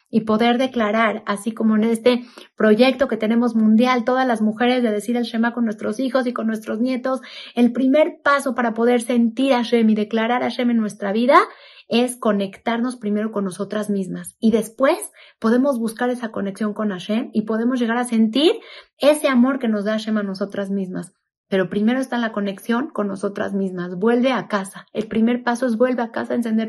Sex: female